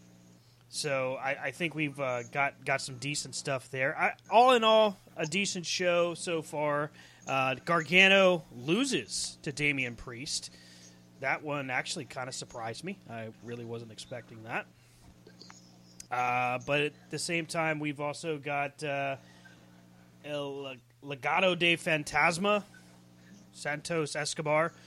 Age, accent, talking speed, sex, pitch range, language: 30-49, American, 135 wpm, male, 115-155 Hz, English